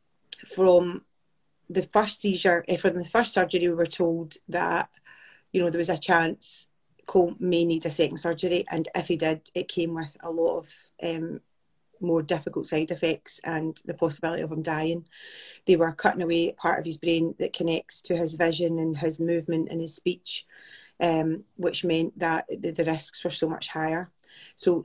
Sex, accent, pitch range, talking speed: female, British, 165-190 Hz, 180 wpm